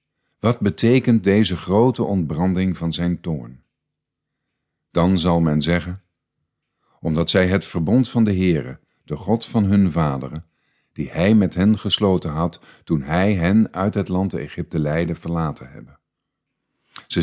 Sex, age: male, 50-69